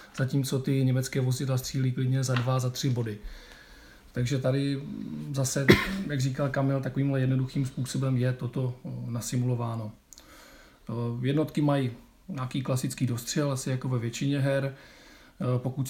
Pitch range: 125-140 Hz